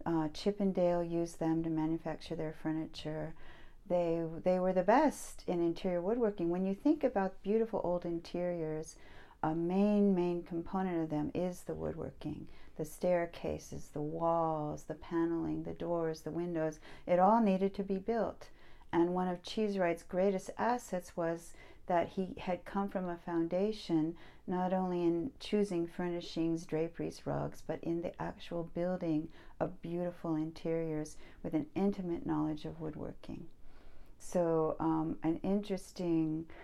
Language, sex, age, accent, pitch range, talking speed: English, female, 40-59, American, 160-185 Hz, 140 wpm